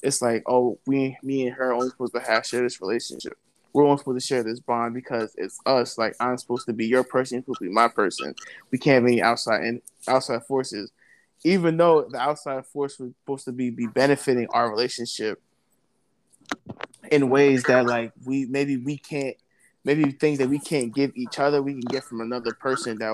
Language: English